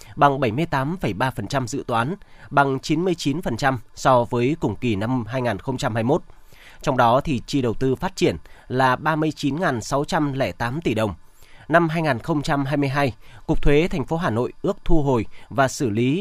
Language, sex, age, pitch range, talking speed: Vietnamese, male, 20-39, 120-150 Hz, 140 wpm